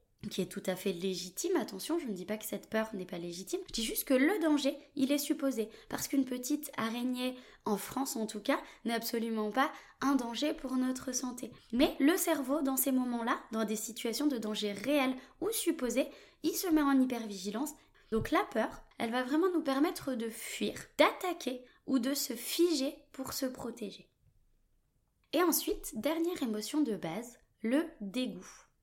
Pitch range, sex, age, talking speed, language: 225-305 Hz, female, 20-39, 185 wpm, French